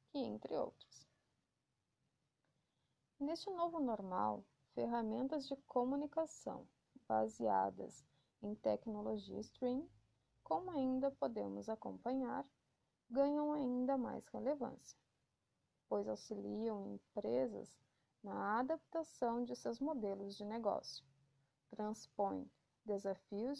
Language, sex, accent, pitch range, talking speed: Portuguese, female, Brazilian, 205-285 Hz, 80 wpm